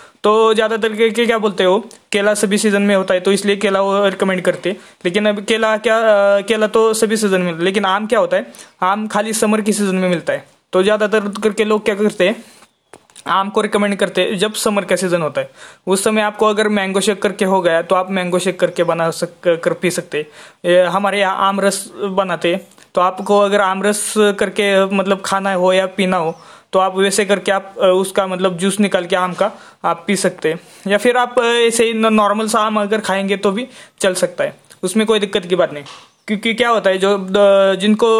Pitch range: 190-215 Hz